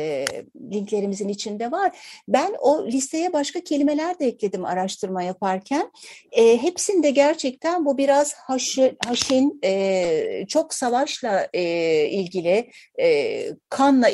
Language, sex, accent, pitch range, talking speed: Turkish, female, native, 195-280 Hz, 110 wpm